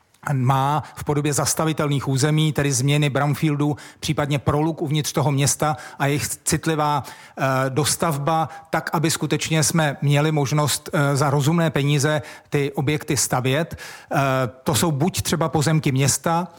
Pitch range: 145-165 Hz